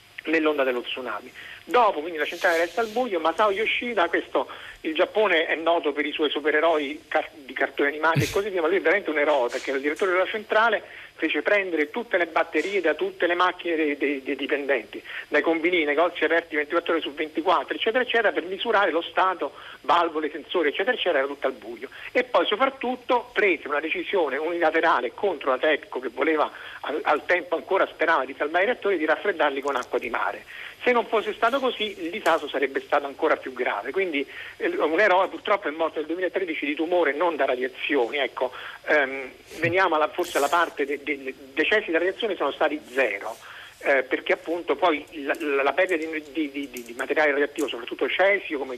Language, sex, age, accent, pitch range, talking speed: Italian, male, 50-69, native, 150-220 Hz, 200 wpm